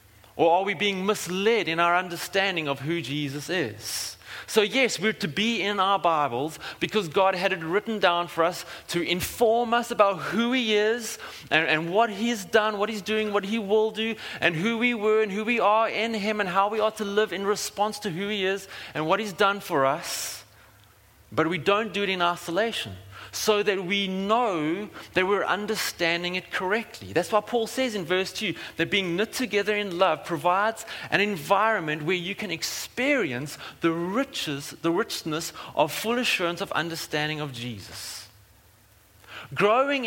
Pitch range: 155-215 Hz